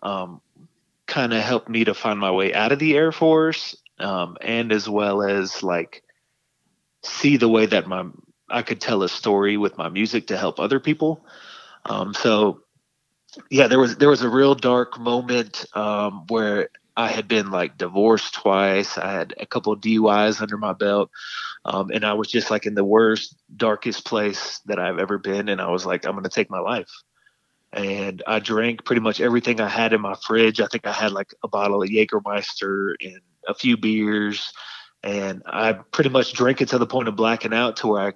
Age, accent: 20-39, American